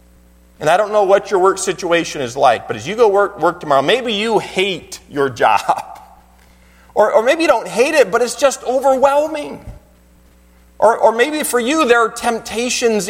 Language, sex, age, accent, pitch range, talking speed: English, male, 40-59, American, 155-220 Hz, 190 wpm